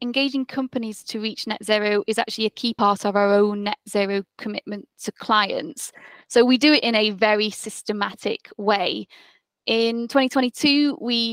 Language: English